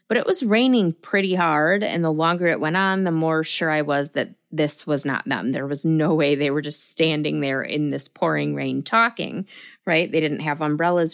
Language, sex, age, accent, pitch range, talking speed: English, female, 20-39, American, 160-225 Hz, 220 wpm